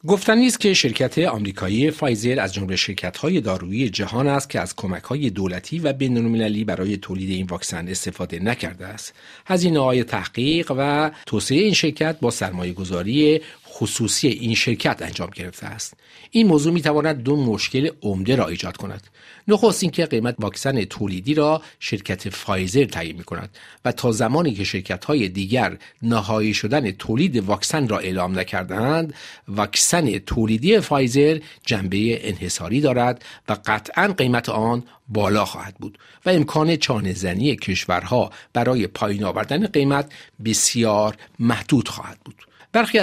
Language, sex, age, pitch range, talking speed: Persian, male, 50-69, 100-145 Hz, 140 wpm